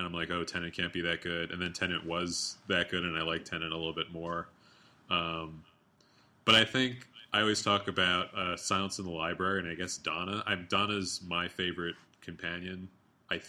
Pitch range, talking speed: 85-95 Hz, 200 wpm